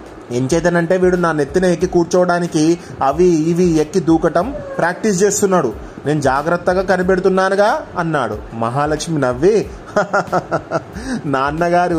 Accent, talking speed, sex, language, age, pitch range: native, 95 wpm, male, Telugu, 30-49, 150-185 Hz